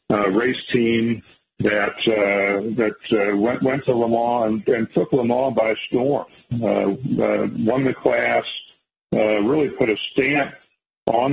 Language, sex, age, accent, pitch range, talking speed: English, male, 50-69, American, 105-115 Hz, 160 wpm